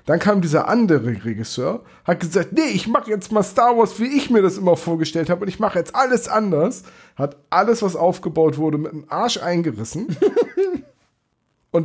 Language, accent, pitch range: German, German, 150-205 Hz